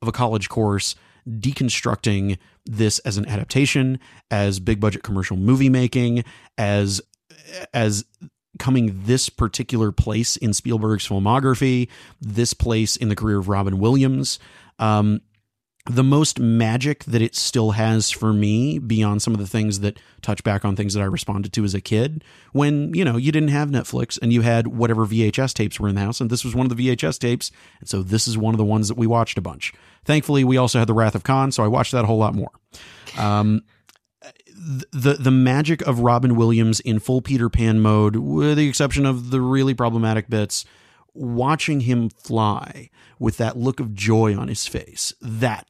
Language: English